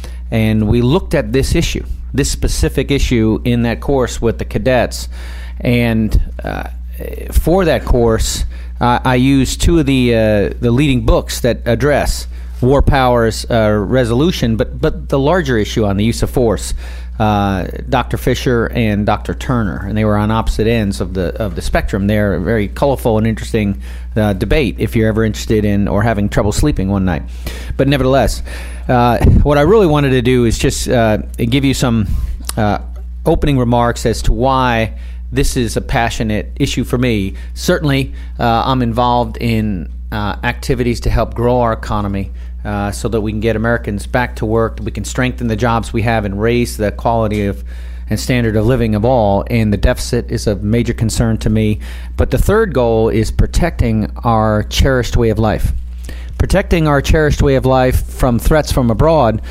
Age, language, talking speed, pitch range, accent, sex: 40-59, English, 180 wpm, 95-125 Hz, American, male